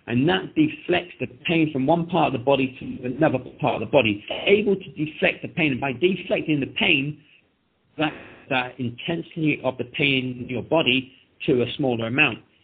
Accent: British